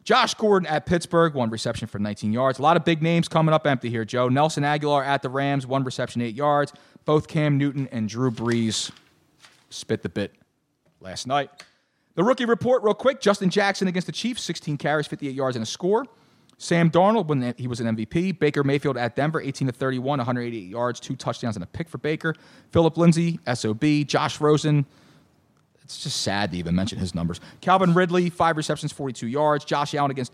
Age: 30-49